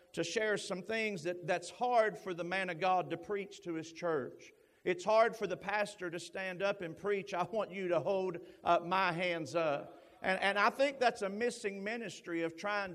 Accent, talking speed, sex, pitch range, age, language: American, 215 wpm, male, 180-205 Hz, 50-69, English